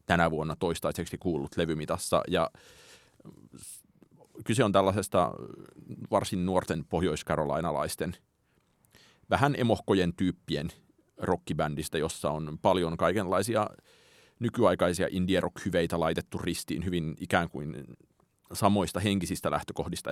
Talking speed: 90 wpm